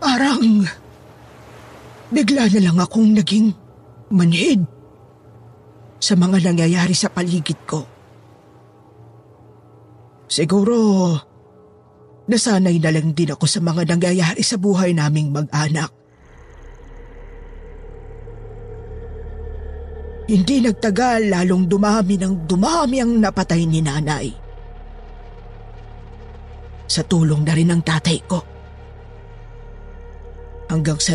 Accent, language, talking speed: native, Filipino, 85 wpm